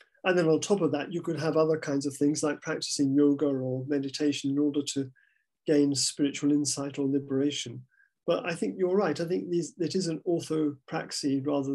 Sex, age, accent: male, 50-69, British